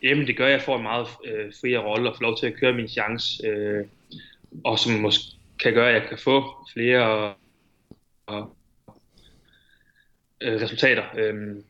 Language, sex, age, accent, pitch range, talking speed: Danish, male, 20-39, native, 110-135 Hz, 170 wpm